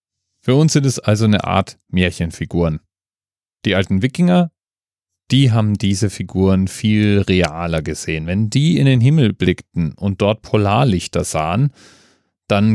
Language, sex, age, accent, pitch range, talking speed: German, male, 30-49, German, 95-125 Hz, 135 wpm